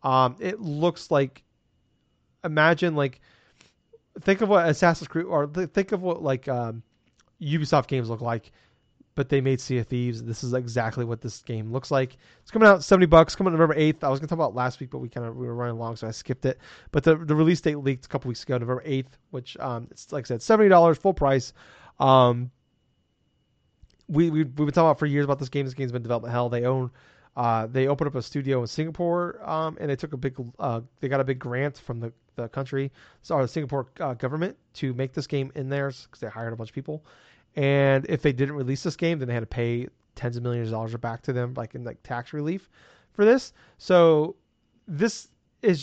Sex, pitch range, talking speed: male, 125-160 Hz, 235 wpm